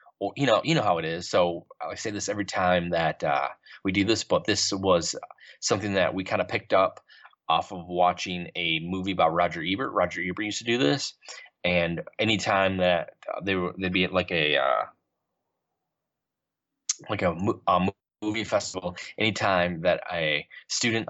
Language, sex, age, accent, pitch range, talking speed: English, male, 20-39, American, 90-100 Hz, 175 wpm